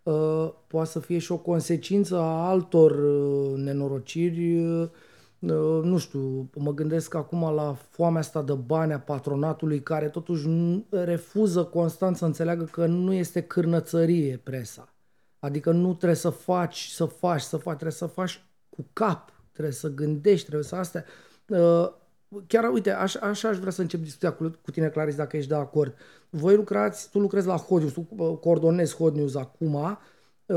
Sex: male